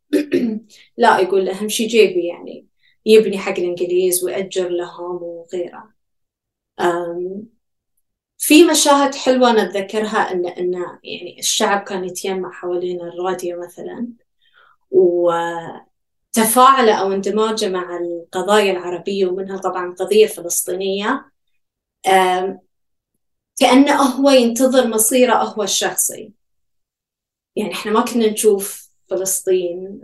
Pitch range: 180-230 Hz